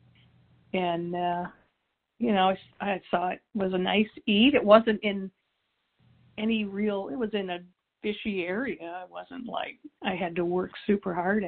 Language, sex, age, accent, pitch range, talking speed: English, female, 50-69, American, 180-220 Hz, 165 wpm